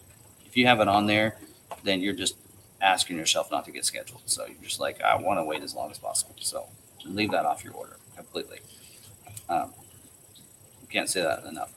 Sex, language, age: male, English, 30-49